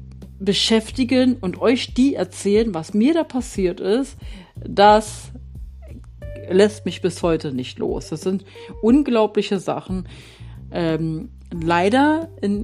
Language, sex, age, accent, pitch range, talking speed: German, female, 50-69, German, 145-220 Hz, 115 wpm